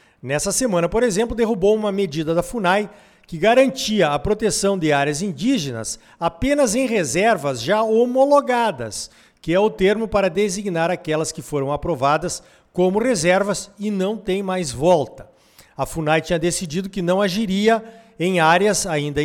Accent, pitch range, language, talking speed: Brazilian, 170-230 Hz, Portuguese, 150 wpm